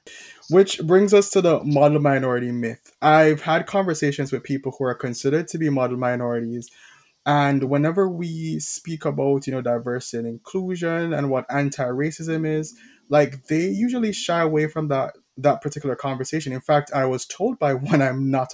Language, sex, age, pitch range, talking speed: English, male, 20-39, 125-155 Hz, 170 wpm